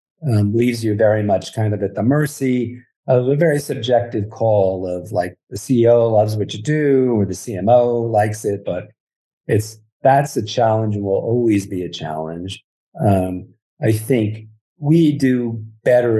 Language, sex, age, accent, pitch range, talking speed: English, male, 40-59, American, 100-125 Hz, 165 wpm